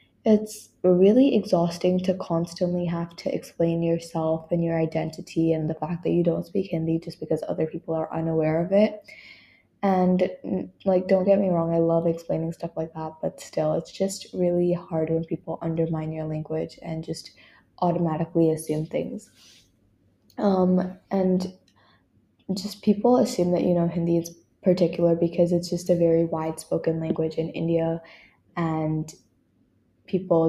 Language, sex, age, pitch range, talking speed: English, female, 10-29, 160-180 Hz, 155 wpm